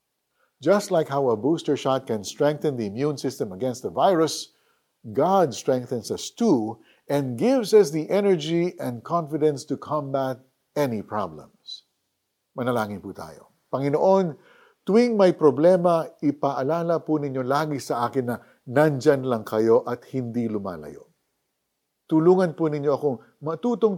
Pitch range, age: 125-180 Hz, 50-69